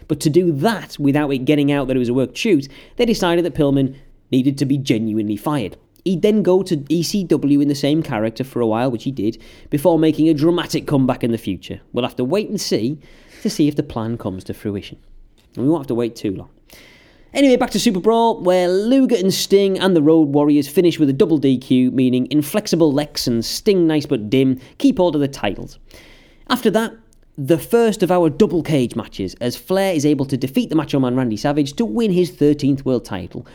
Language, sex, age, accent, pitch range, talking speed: English, male, 30-49, British, 130-210 Hz, 225 wpm